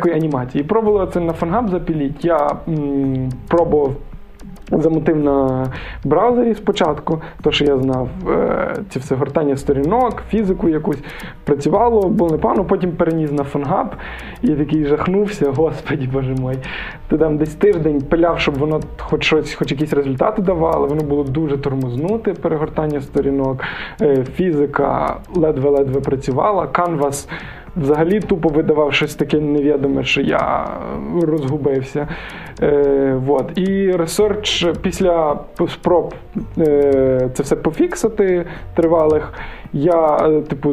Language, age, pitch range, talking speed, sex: Russian, 20-39, 145-175 Hz, 120 wpm, male